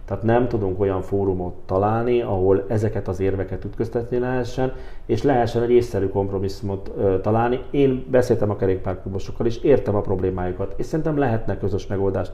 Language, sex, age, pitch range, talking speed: Hungarian, male, 40-59, 95-115 Hz, 155 wpm